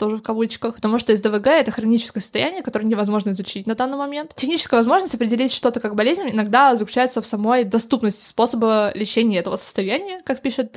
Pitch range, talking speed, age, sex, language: 210-250 Hz, 190 wpm, 20-39, female, Russian